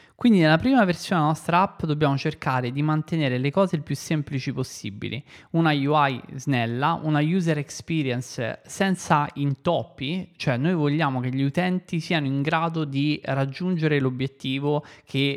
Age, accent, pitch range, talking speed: 20-39, native, 130-165 Hz, 150 wpm